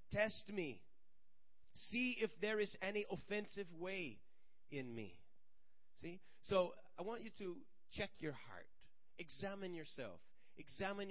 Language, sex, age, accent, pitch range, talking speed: English, male, 40-59, American, 125-180 Hz, 125 wpm